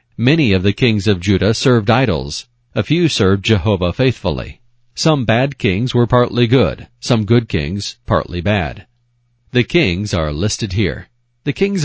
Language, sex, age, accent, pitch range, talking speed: English, male, 40-59, American, 100-130 Hz, 155 wpm